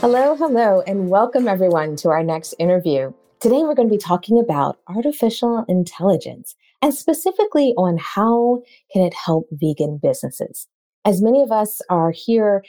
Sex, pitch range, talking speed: female, 165-255 Hz, 155 wpm